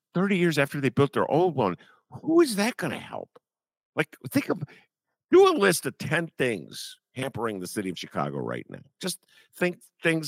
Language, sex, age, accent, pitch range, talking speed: English, male, 50-69, American, 145-230 Hz, 195 wpm